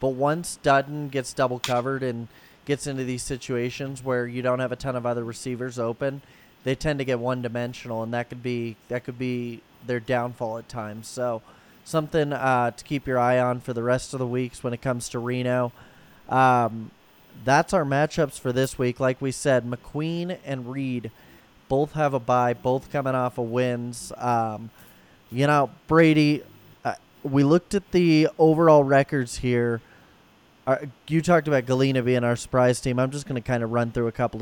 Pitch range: 120-145 Hz